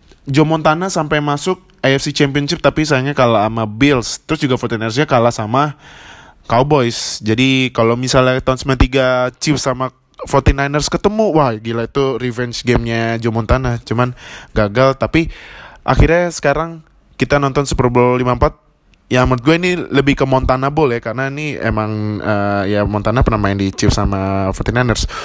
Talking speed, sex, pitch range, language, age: 150 wpm, male, 120-145 Hz, Indonesian, 20-39